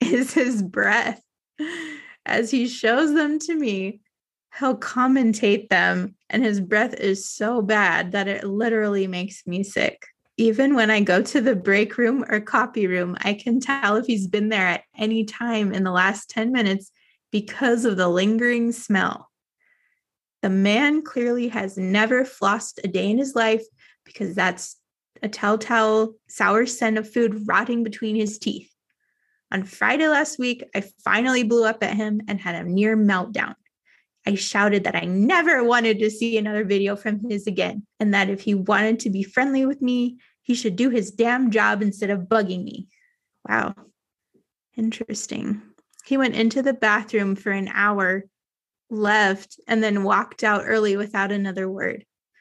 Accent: American